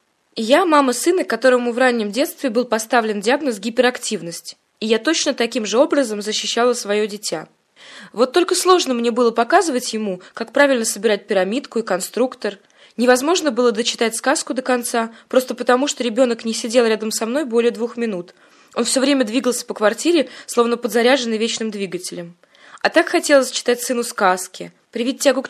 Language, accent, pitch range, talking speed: Russian, native, 215-285 Hz, 165 wpm